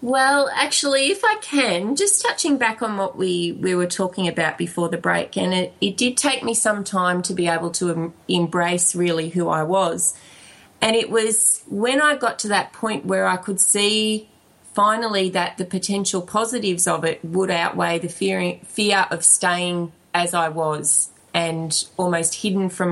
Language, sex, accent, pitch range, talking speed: English, female, Australian, 170-205 Hz, 180 wpm